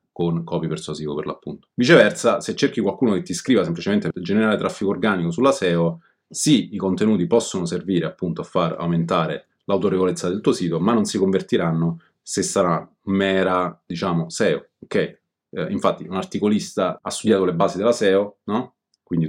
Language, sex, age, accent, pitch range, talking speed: Italian, male, 30-49, native, 85-95 Hz, 170 wpm